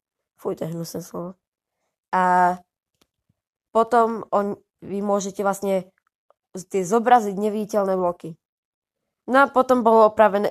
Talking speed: 95 wpm